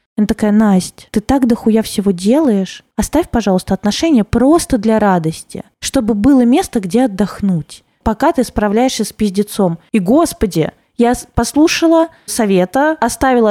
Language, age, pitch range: Russian, 20-39, 205-255 Hz